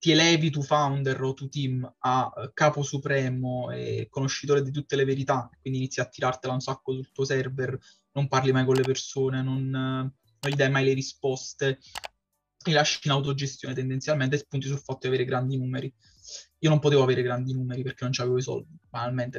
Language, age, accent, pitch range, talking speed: Italian, 20-39, native, 130-150 Hz, 195 wpm